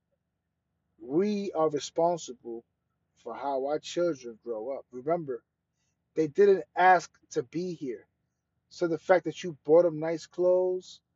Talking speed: 135 wpm